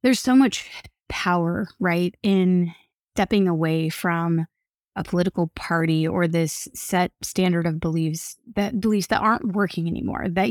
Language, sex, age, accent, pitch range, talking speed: English, female, 20-39, American, 165-195 Hz, 145 wpm